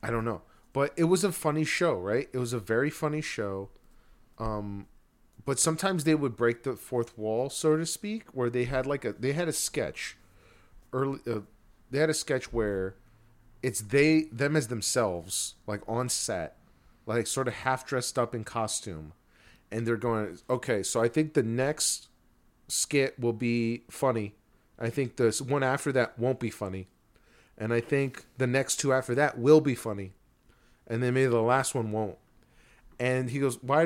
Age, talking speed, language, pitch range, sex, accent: 40-59, 185 wpm, English, 115-145 Hz, male, American